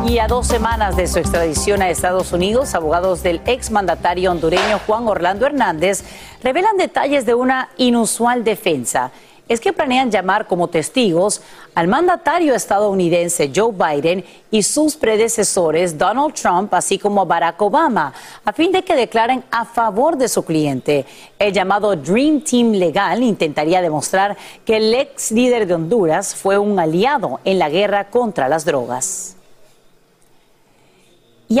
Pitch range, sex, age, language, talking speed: 180-250 Hz, female, 40-59, Spanish, 145 wpm